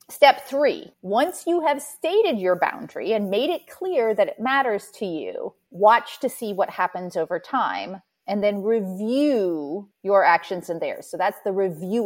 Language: English